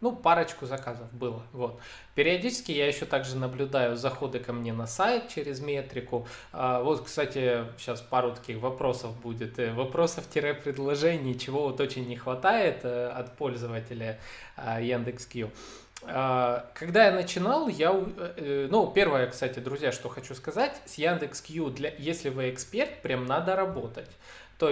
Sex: male